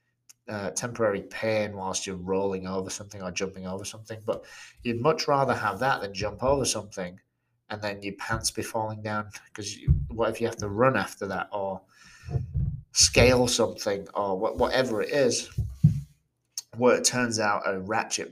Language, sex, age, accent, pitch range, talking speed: English, male, 30-49, British, 95-120 Hz, 170 wpm